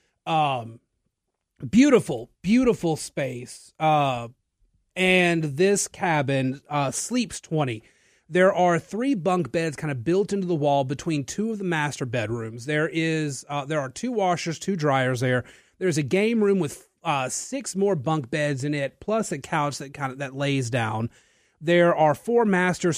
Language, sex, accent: English, male, American